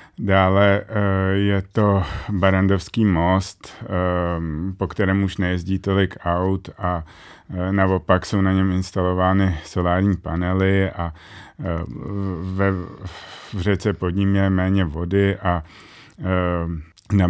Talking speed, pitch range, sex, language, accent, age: 110 wpm, 90-100 Hz, male, Czech, native, 30-49